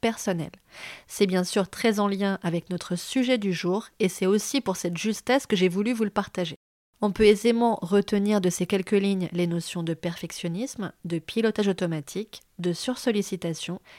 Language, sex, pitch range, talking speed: French, female, 180-225 Hz, 175 wpm